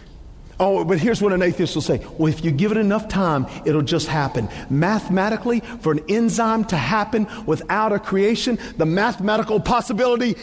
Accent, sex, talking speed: American, male, 175 wpm